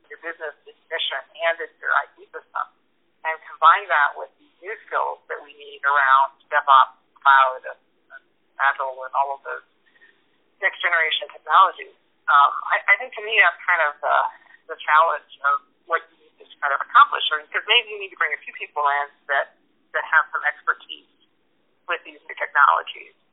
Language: English